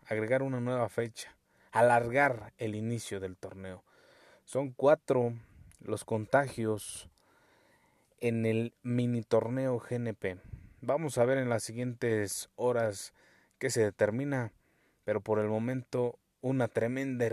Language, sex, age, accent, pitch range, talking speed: Spanish, male, 30-49, Mexican, 105-125 Hz, 120 wpm